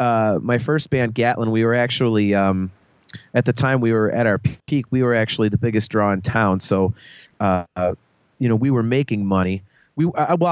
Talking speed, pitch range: 200 wpm, 105-130 Hz